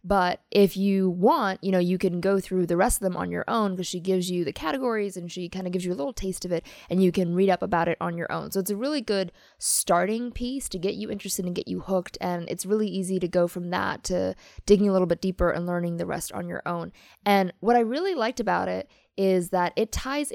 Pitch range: 180-205 Hz